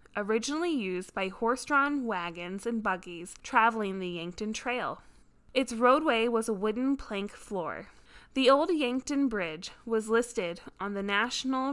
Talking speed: 140 wpm